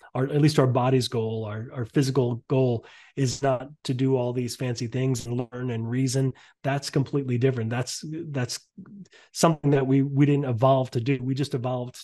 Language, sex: English, male